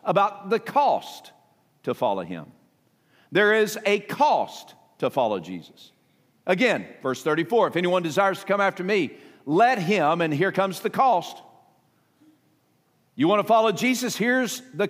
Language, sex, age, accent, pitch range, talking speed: English, male, 50-69, American, 180-250 Hz, 150 wpm